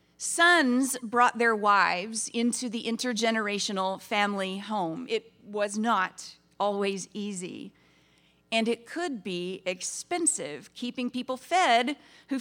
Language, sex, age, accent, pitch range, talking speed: English, female, 40-59, American, 180-250 Hz, 110 wpm